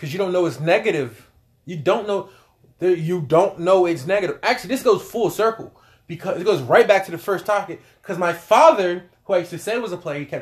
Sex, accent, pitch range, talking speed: male, American, 175-240 Hz, 240 wpm